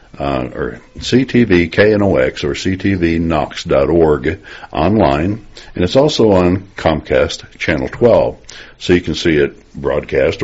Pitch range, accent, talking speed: 75-95 Hz, American, 120 wpm